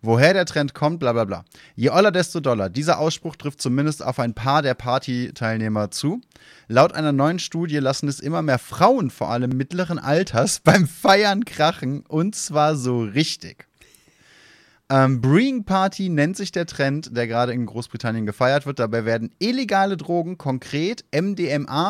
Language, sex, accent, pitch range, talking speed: German, male, German, 125-175 Hz, 165 wpm